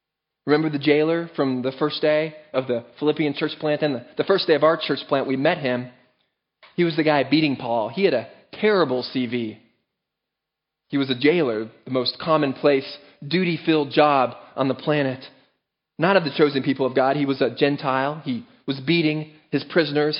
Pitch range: 130-165 Hz